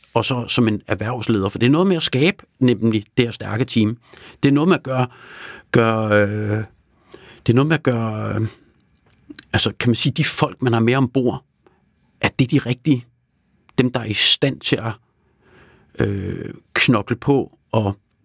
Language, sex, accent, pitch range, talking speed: Danish, male, native, 120-170 Hz, 185 wpm